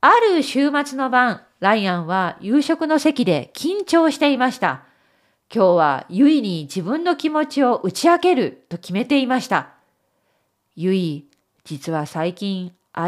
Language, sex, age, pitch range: Japanese, female, 40-59, 180-275 Hz